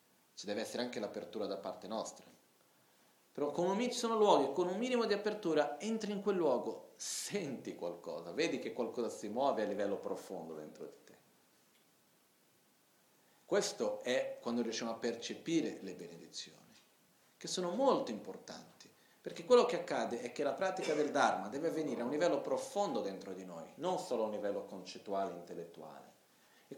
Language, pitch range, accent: Italian, 120-185 Hz, native